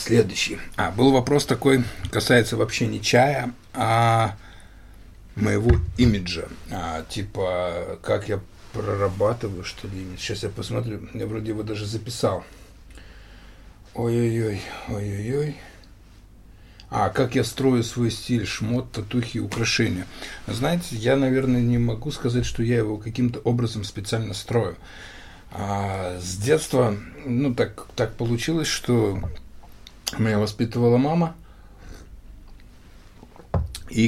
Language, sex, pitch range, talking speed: Russian, male, 105-125 Hz, 110 wpm